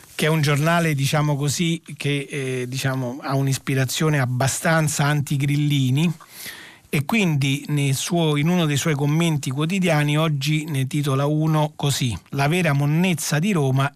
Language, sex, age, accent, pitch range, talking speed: Italian, male, 40-59, native, 125-155 Hz, 140 wpm